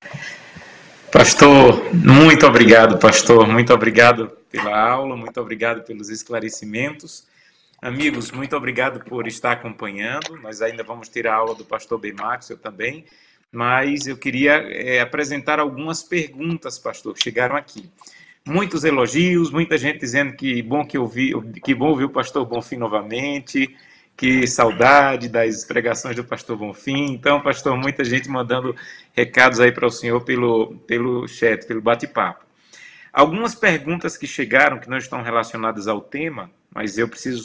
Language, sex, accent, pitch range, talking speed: Portuguese, male, Brazilian, 115-150 Hz, 150 wpm